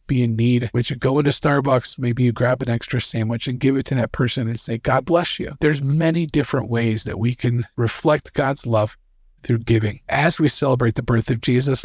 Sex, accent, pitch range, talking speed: male, American, 120-150 Hz, 225 wpm